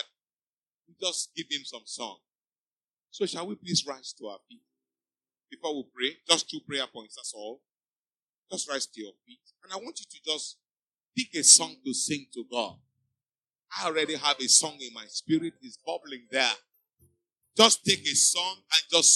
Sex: male